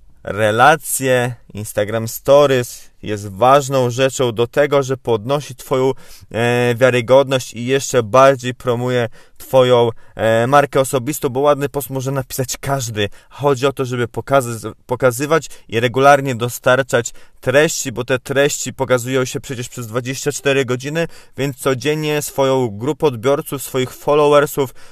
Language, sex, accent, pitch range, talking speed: Polish, male, native, 125-140 Hz, 120 wpm